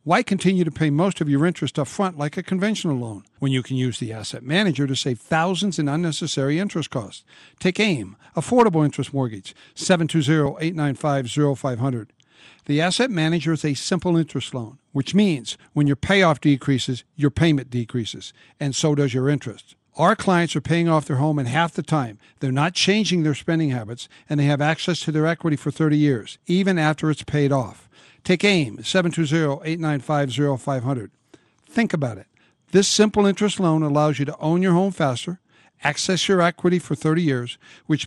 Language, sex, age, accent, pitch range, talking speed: English, male, 60-79, American, 140-170 Hz, 180 wpm